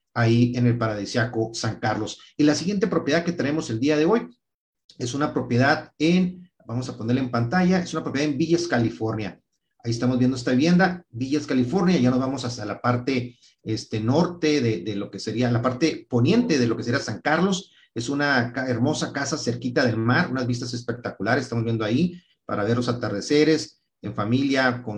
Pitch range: 115-150 Hz